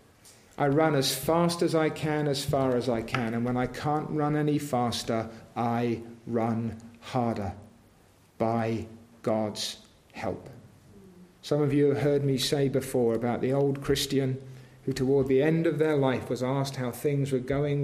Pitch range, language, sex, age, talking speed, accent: 120-155 Hz, English, male, 50-69, 170 wpm, British